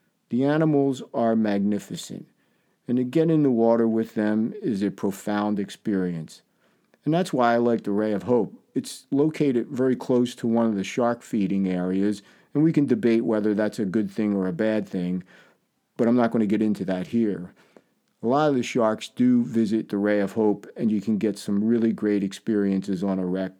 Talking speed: 205 wpm